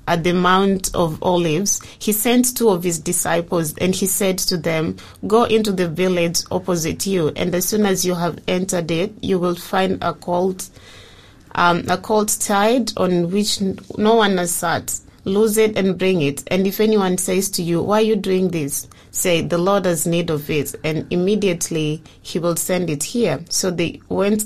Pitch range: 170-195 Hz